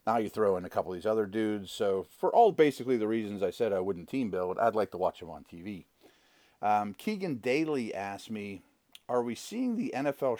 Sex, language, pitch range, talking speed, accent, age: male, English, 110-140 Hz, 225 wpm, American, 40-59